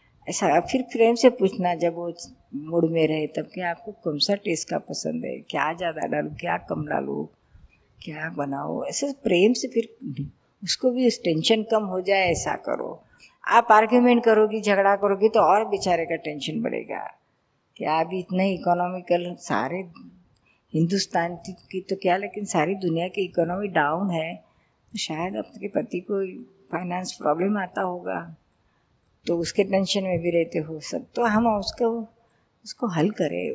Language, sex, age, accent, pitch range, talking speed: Hindi, female, 50-69, native, 170-210 Hz, 155 wpm